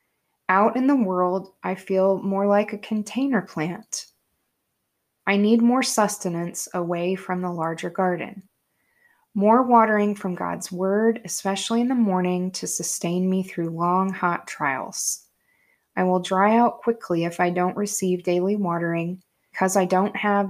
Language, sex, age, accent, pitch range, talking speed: English, female, 20-39, American, 170-205 Hz, 150 wpm